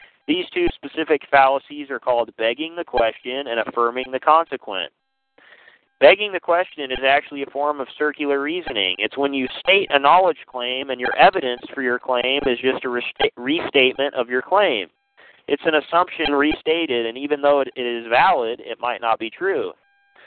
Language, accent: English, American